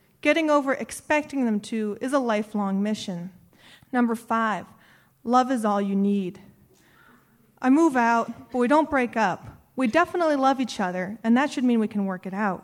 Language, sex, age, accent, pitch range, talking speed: English, female, 30-49, American, 220-295 Hz, 180 wpm